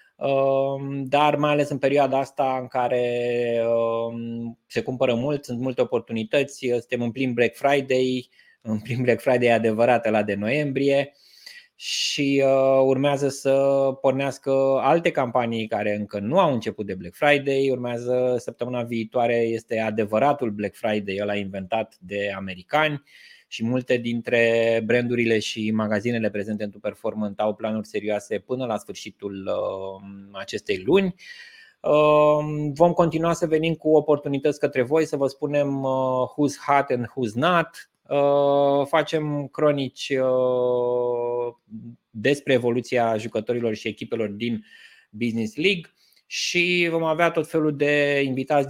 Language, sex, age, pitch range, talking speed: Romanian, male, 20-39, 115-145 Hz, 130 wpm